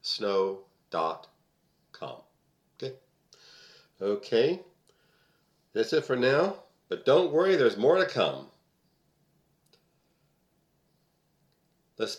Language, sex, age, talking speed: English, male, 50-69, 75 wpm